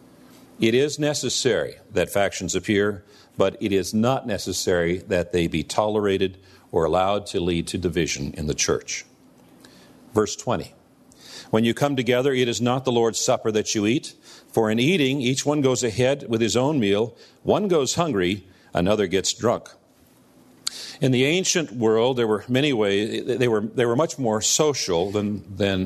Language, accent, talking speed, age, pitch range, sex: English, American, 170 wpm, 50-69, 105-130 Hz, male